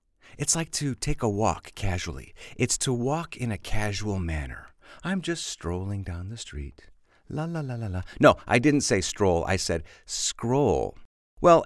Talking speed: 175 wpm